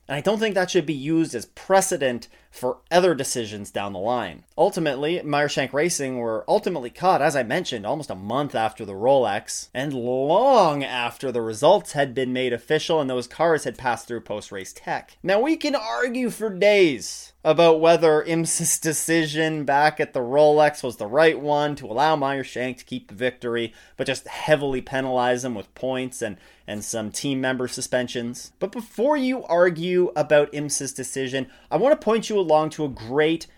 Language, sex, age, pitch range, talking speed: English, male, 30-49, 130-175 Hz, 185 wpm